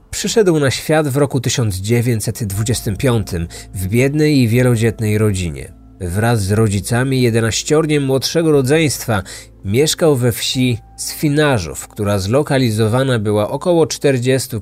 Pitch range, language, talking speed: 105-135 Hz, Polish, 105 wpm